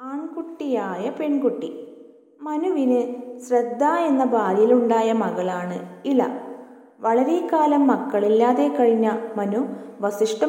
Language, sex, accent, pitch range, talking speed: Malayalam, female, native, 220-270 Hz, 80 wpm